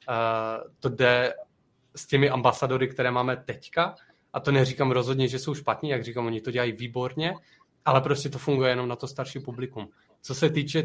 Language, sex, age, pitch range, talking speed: Czech, male, 20-39, 120-135 Hz, 190 wpm